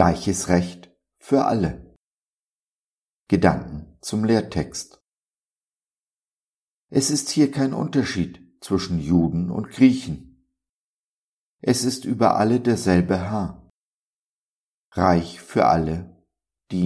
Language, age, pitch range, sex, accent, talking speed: German, 50-69, 85-100 Hz, male, German, 95 wpm